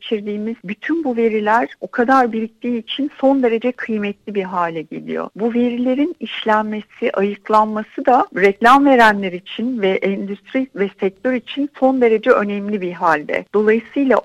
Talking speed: 135 wpm